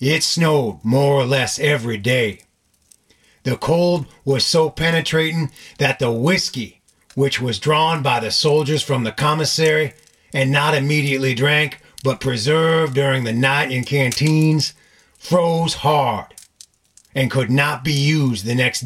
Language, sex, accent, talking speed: English, male, American, 140 wpm